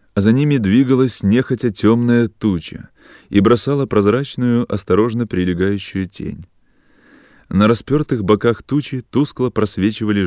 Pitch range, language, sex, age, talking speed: 105-135 Hz, Russian, male, 20-39, 110 wpm